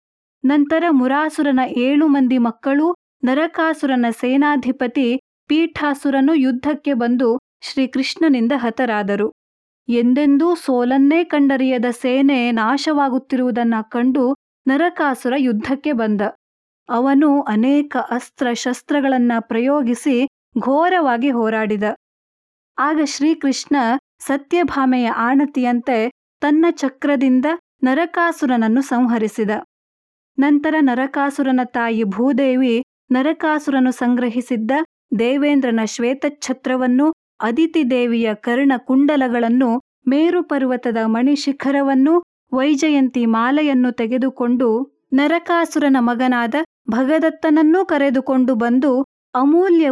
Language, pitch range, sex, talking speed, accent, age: Kannada, 245-290 Hz, female, 70 wpm, native, 20-39